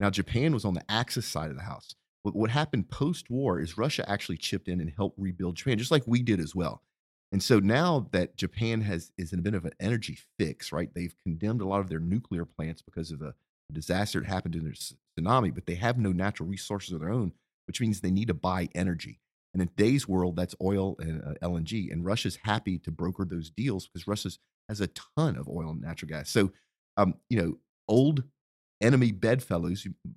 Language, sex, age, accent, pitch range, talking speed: English, male, 40-59, American, 85-110 Hz, 220 wpm